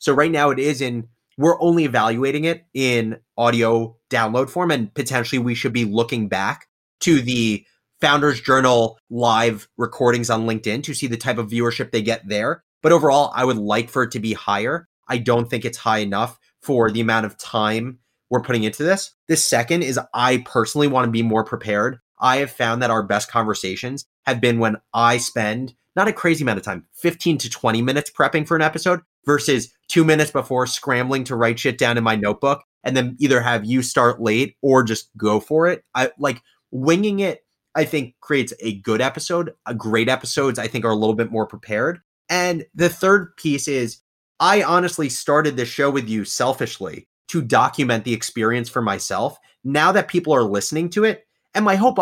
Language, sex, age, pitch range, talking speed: English, male, 30-49, 115-150 Hz, 200 wpm